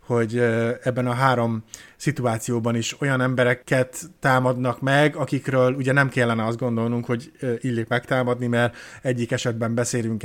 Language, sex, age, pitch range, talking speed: Hungarian, male, 20-39, 110-135 Hz, 135 wpm